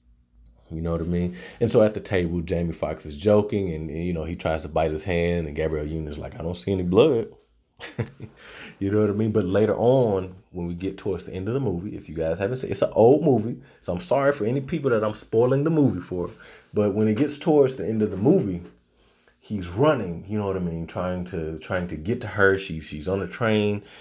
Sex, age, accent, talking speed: male, 30-49, American, 250 wpm